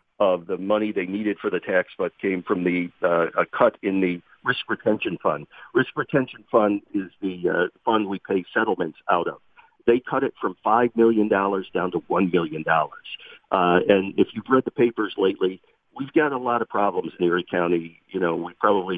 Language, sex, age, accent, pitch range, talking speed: English, male, 50-69, American, 95-125 Hz, 200 wpm